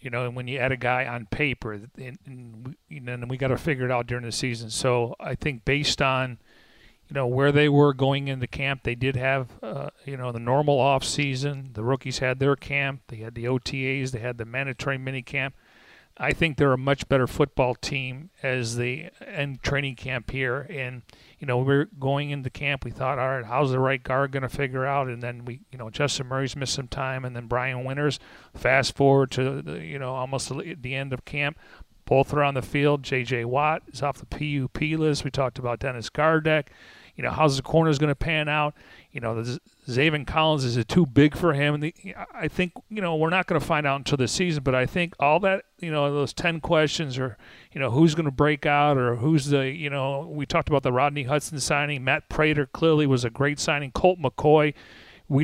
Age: 40-59